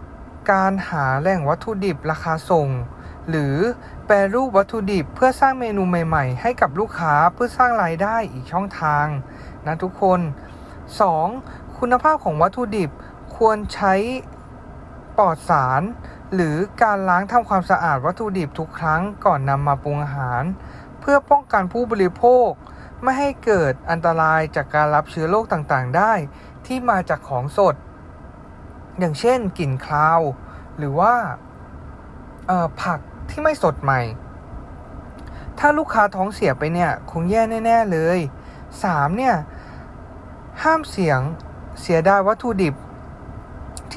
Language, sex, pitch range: Thai, male, 155-225 Hz